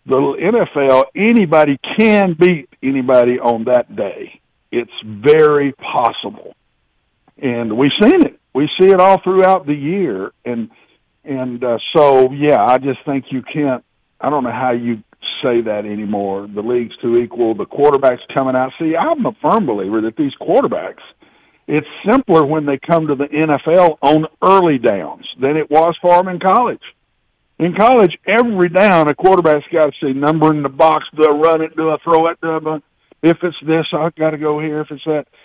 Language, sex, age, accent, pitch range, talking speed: English, male, 50-69, American, 130-165 Hz, 185 wpm